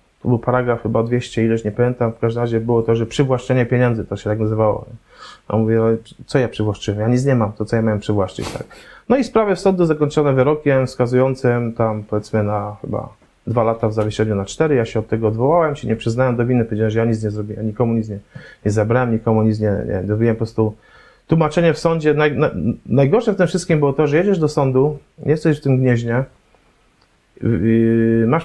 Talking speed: 215 wpm